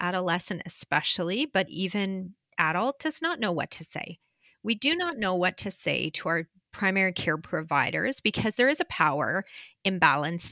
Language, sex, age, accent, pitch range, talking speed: English, female, 30-49, American, 175-235 Hz, 165 wpm